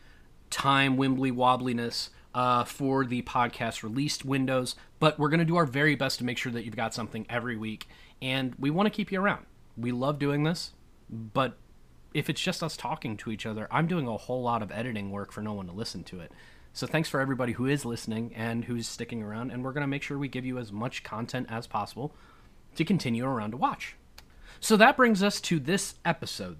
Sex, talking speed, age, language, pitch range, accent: male, 220 wpm, 30-49, English, 110-160 Hz, American